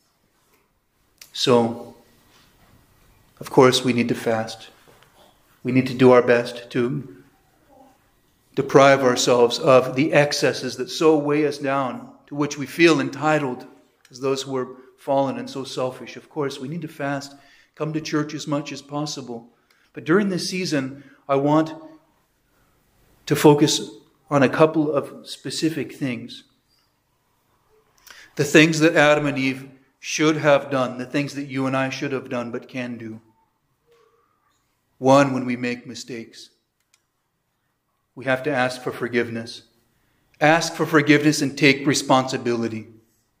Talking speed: 140 wpm